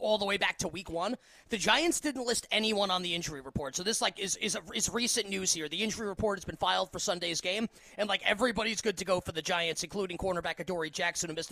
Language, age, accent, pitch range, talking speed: English, 20-39, American, 180-220 Hz, 255 wpm